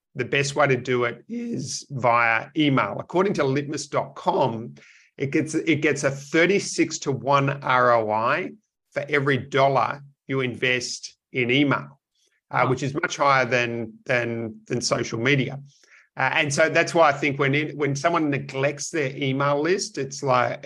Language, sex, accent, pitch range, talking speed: English, male, Australian, 125-145 Hz, 160 wpm